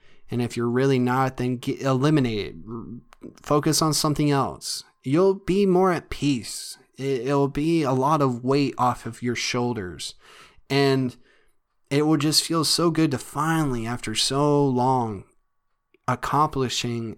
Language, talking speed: English, 140 wpm